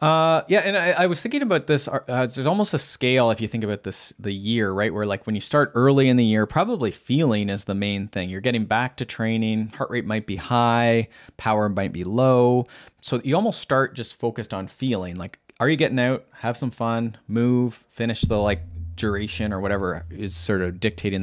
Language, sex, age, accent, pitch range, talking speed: English, male, 30-49, American, 100-125 Hz, 220 wpm